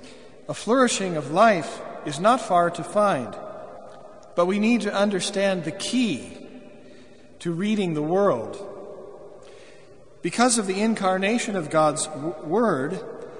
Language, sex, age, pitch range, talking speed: English, male, 50-69, 160-200 Hz, 120 wpm